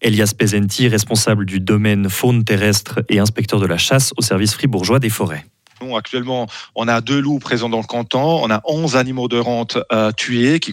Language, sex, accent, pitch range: French, male, French, 105-125 Hz